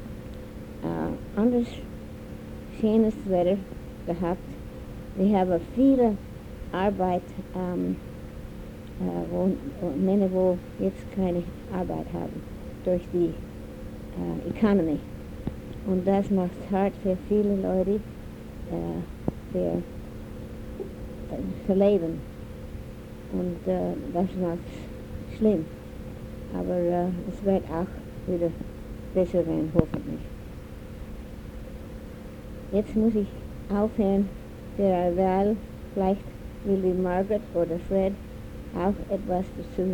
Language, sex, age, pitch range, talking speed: English, female, 60-79, 165-200 Hz, 100 wpm